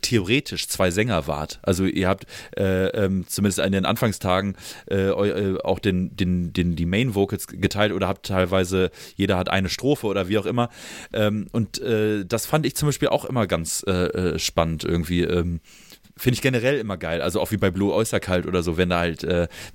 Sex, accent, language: male, German, German